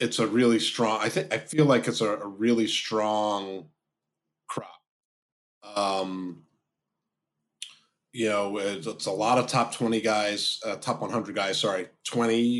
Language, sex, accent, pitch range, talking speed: English, male, American, 100-120 Hz, 150 wpm